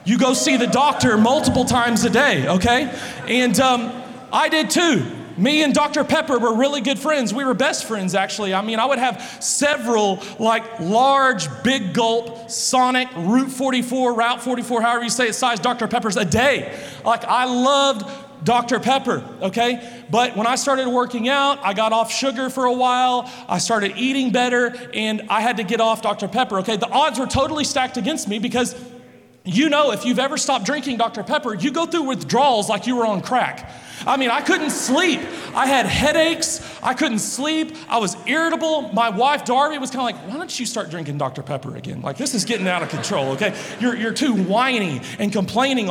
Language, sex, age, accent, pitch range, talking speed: English, male, 30-49, American, 220-265 Hz, 200 wpm